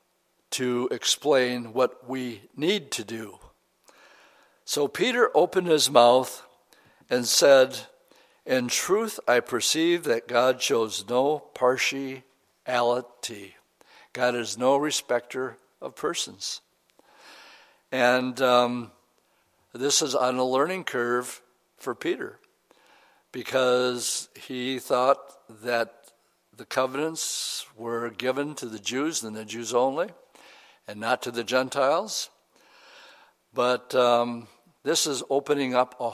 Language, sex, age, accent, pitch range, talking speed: English, male, 60-79, American, 120-135 Hz, 110 wpm